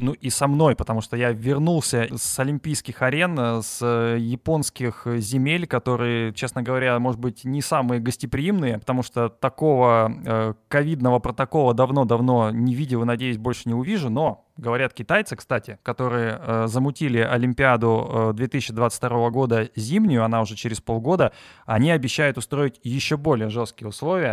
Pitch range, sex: 115-135 Hz, male